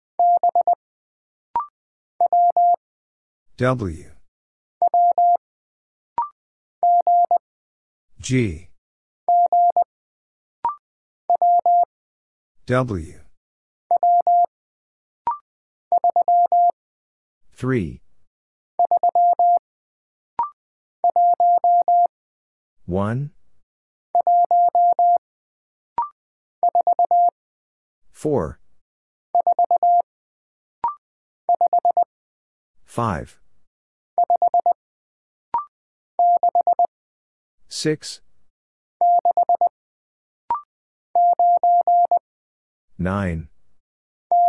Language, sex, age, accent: English, male, 50-69, American